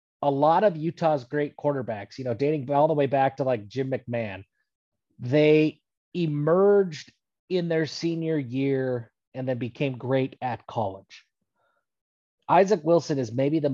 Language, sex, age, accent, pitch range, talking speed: English, male, 30-49, American, 120-150 Hz, 150 wpm